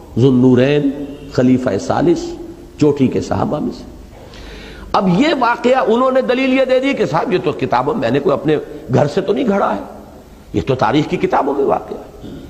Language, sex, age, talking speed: Urdu, male, 50-69, 180 wpm